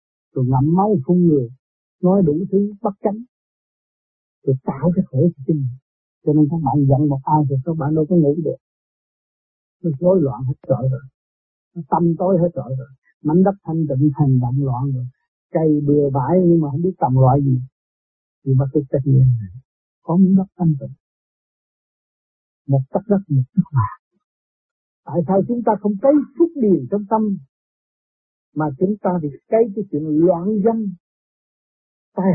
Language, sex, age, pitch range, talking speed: Vietnamese, male, 60-79, 135-190 Hz, 175 wpm